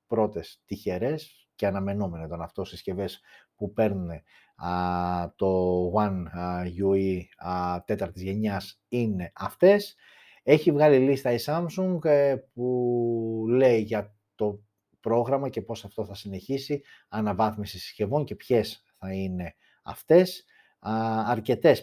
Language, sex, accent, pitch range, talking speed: Greek, male, native, 105-130 Hz, 115 wpm